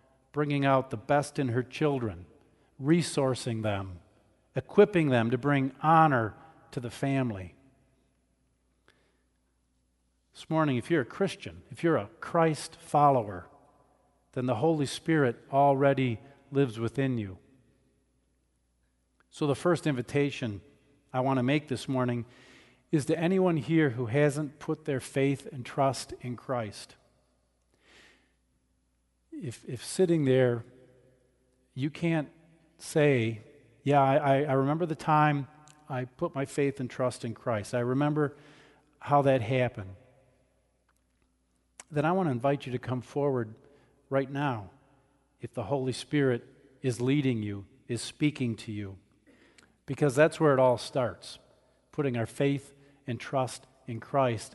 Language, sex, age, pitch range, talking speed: English, male, 50-69, 115-145 Hz, 130 wpm